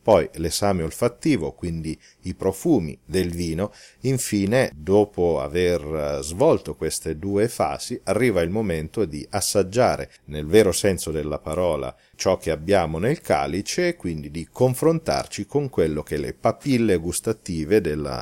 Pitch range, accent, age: 80-105 Hz, native, 40-59